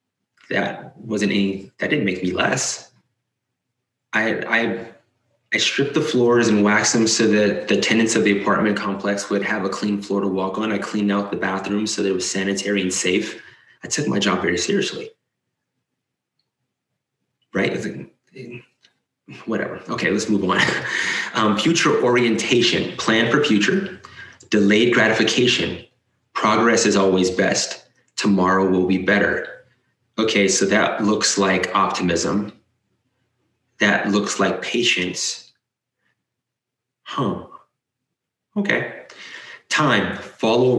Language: English